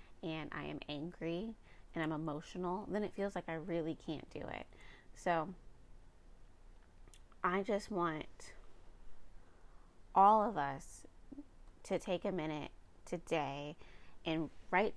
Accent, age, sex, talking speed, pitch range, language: American, 20-39, female, 120 wpm, 155-190 Hz, English